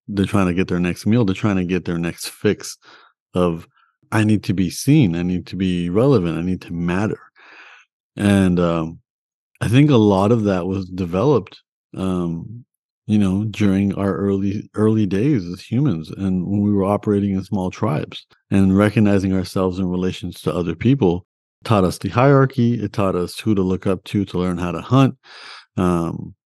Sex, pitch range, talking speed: male, 90-105 Hz, 190 wpm